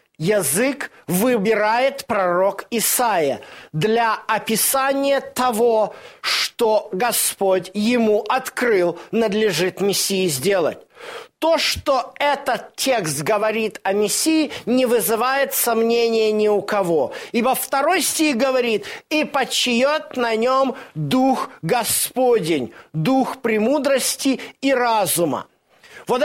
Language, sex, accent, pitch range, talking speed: Russian, male, native, 205-270 Hz, 95 wpm